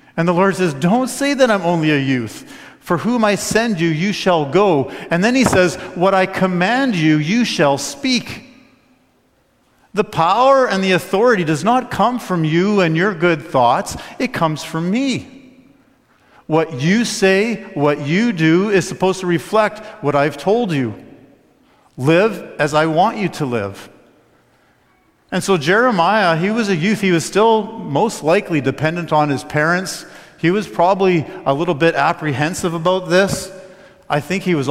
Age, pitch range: 50-69, 145-195 Hz